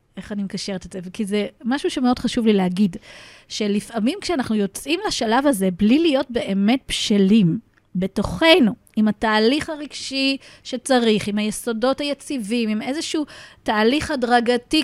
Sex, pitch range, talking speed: female, 210-285 Hz, 135 wpm